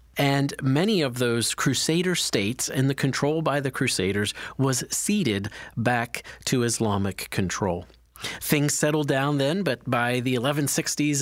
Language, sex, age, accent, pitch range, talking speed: English, male, 40-59, American, 115-145 Hz, 140 wpm